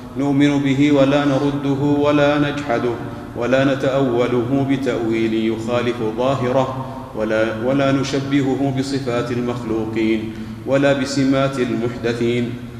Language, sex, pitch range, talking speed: Arabic, male, 115-130 Hz, 90 wpm